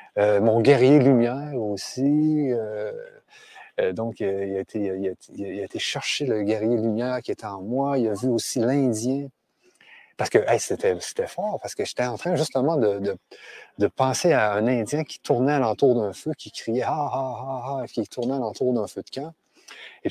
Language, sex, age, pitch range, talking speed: French, male, 30-49, 105-145 Hz, 180 wpm